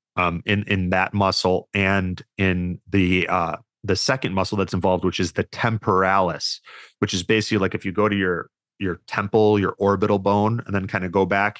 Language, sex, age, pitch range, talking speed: English, male, 30-49, 90-105 Hz, 195 wpm